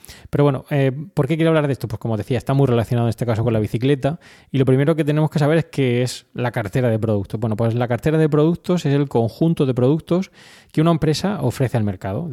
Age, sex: 20-39, male